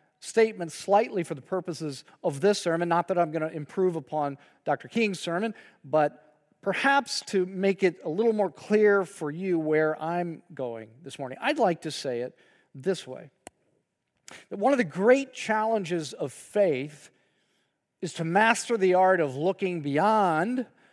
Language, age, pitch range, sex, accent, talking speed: English, 40-59, 150-205 Hz, male, American, 165 wpm